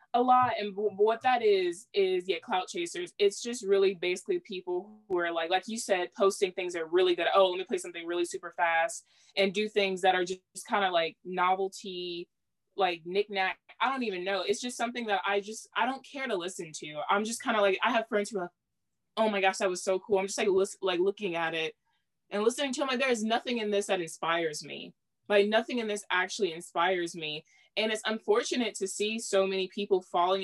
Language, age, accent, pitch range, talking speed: English, 20-39, American, 175-210 Hz, 225 wpm